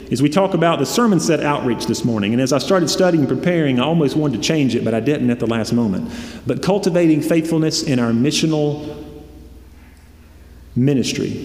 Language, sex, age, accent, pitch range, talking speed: English, male, 30-49, American, 115-155 Hz, 195 wpm